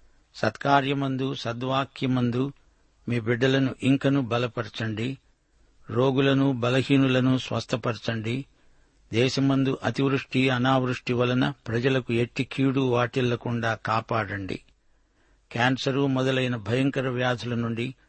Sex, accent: male, native